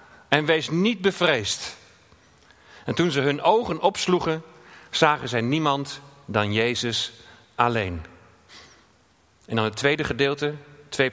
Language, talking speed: Dutch, 120 wpm